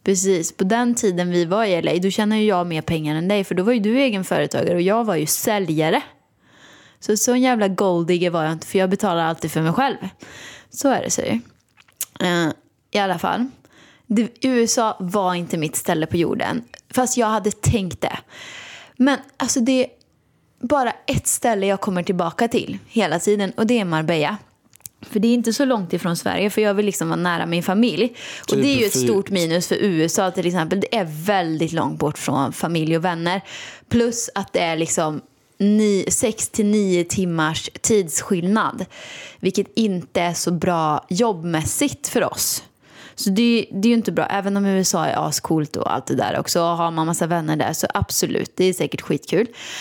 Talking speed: 190 wpm